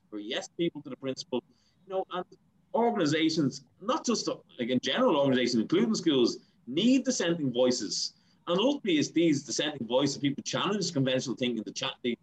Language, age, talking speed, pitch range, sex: English, 30-49, 160 wpm, 120-170 Hz, male